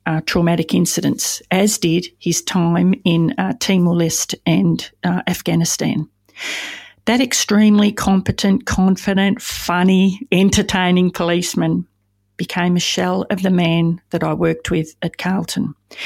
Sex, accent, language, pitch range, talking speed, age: female, Australian, English, 170-195 Hz, 120 wpm, 50-69